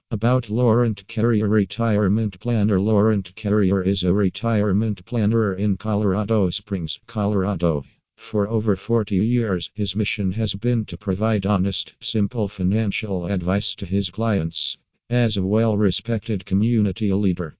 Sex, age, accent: male, 50-69, American